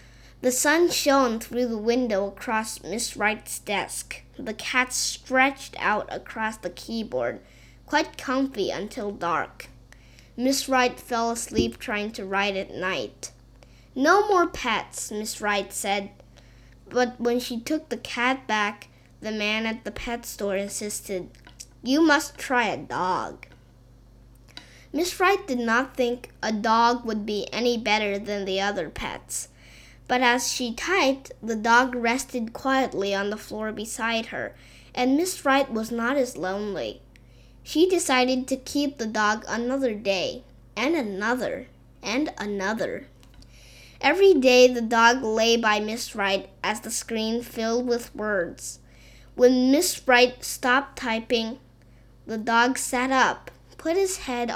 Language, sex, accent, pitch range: Chinese, female, American, 205-255 Hz